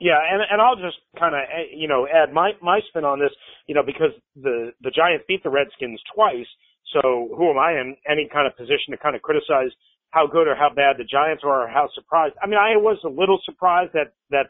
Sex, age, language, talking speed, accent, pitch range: male, 40-59, English, 240 wpm, American, 155-195 Hz